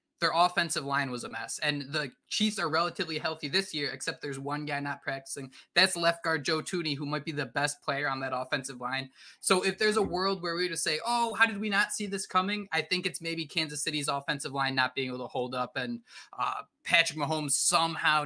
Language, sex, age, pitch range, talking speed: English, male, 20-39, 140-185 Hz, 235 wpm